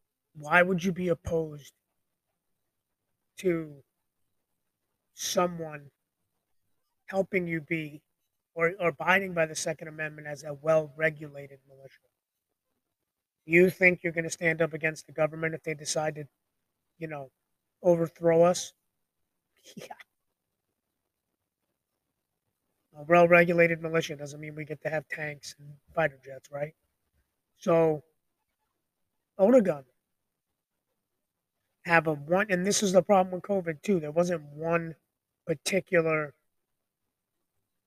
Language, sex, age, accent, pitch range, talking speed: English, male, 20-39, American, 150-175 Hz, 115 wpm